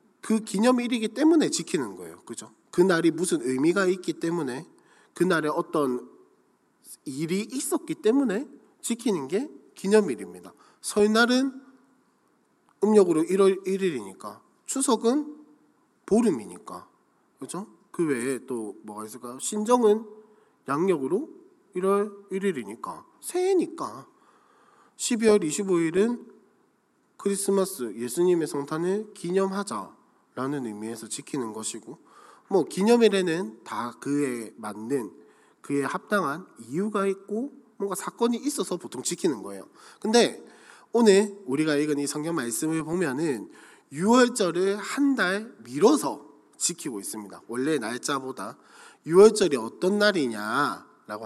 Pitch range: 145-220 Hz